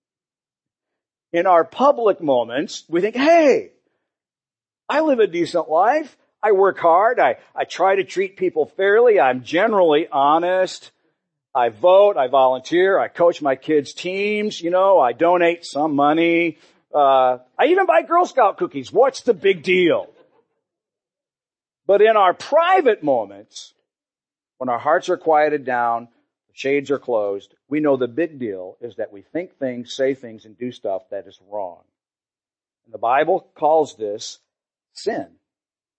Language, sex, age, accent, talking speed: English, male, 50-69, American, 150 wpm